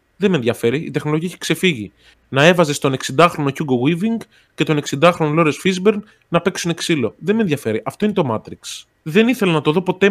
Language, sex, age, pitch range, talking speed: Greek, male, 20-39, 125-200 Hz, 200 wpm